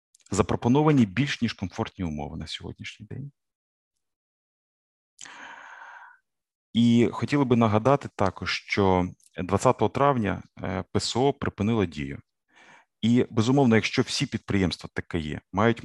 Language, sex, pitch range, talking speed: Ukrainian, male, 85-120 Hz, 105 wpm